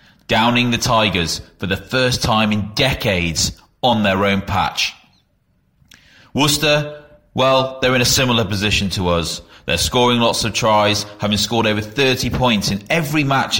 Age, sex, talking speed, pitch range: 30-49, male, 155 wpm, 95-120 Hz